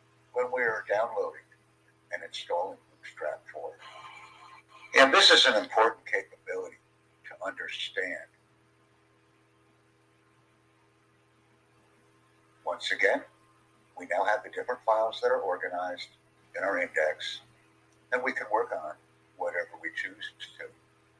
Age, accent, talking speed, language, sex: 60-79, American, 110 wpm, English, male